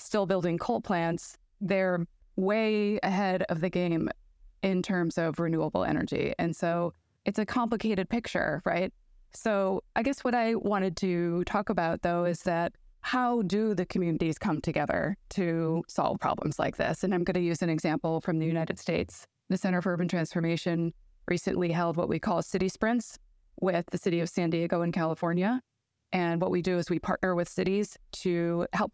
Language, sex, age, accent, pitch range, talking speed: English, female, 20-39, American, 170-195 Hz, 180 wpm